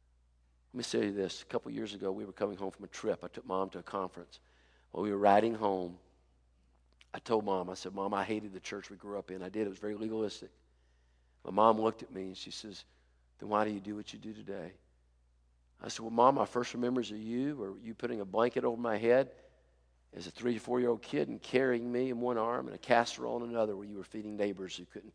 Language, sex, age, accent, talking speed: English, male, 50-69, American, 260 wpm